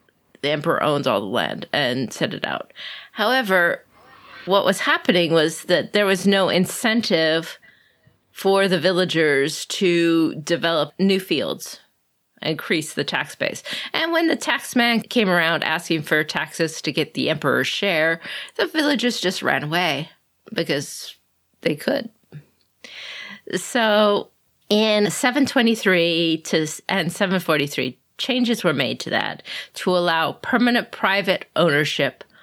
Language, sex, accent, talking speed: English, female, American, 130 wpm